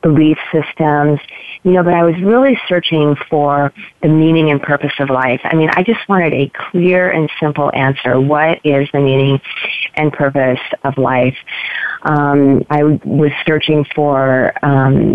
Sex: female